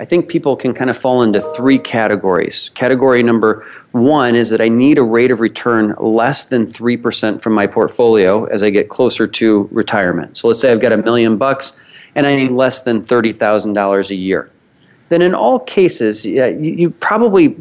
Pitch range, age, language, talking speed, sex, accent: 110-150 Hz, 40-59, English, 185 wpm, male, American